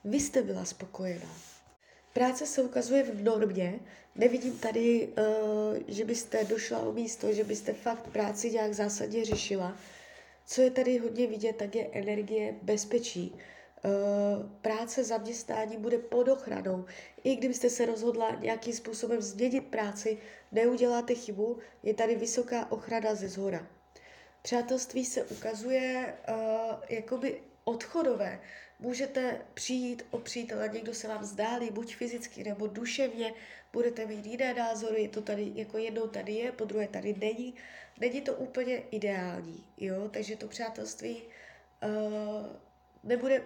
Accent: native